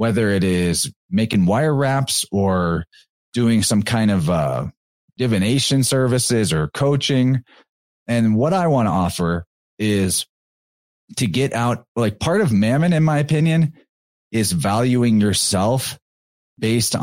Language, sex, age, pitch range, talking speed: English, male, 30-49, 100-125 Hz, 130 wpm